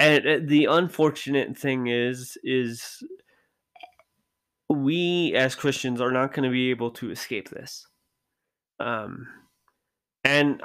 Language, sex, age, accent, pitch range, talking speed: English, male, 20-39, American, 120-140 Hz, 115 wpm